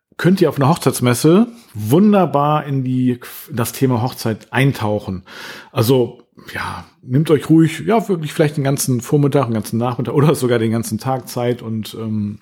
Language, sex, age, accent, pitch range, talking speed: German, male, 40-59, German, 120-150 Hz, 170 wpm